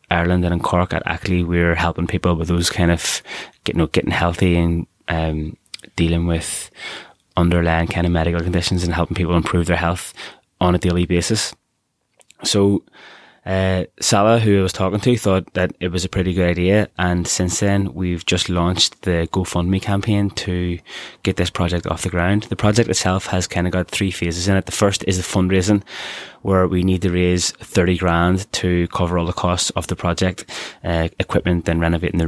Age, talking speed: 20-39, 190 wpm